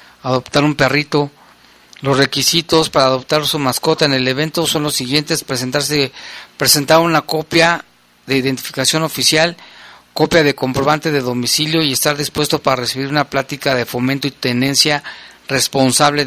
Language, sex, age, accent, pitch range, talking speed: Spanish, male, 40-59, Mexican, 130-155 Hz, 145 wpm